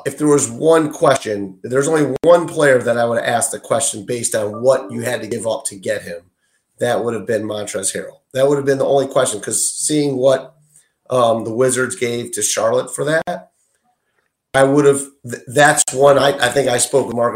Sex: male